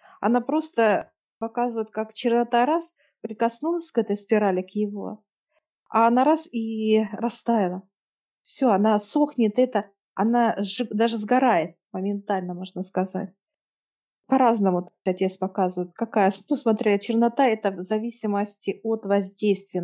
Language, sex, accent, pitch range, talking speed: Russian, female, native, 200-230 Hz, 120 wpm